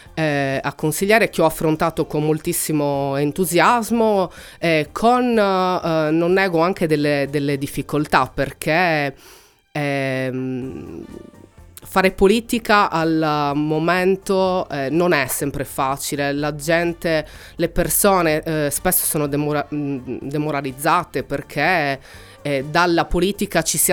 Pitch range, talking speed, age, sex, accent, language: 140-175 Hz, 110 wpm, 30-49, female, native, Italian